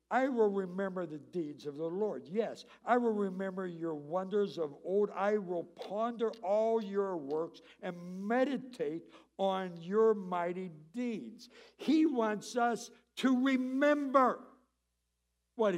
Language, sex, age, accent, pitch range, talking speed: English, male, 60-79, American, 185-245 Hz, 130 wpm